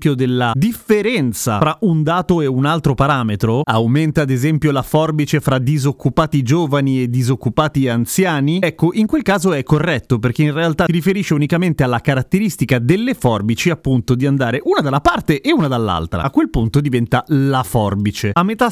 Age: 30-49